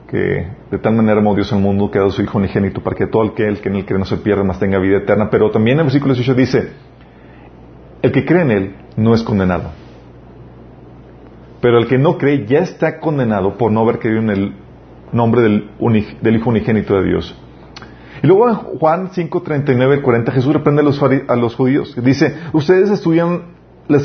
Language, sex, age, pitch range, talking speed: Spanish, male, 40-59, 110-165 Hz, 215 wpm